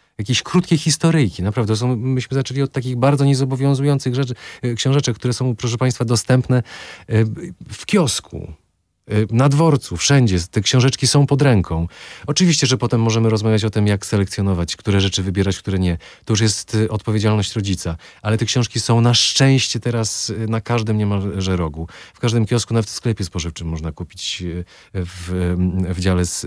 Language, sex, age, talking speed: Polish, male, 40-59, 160 wpm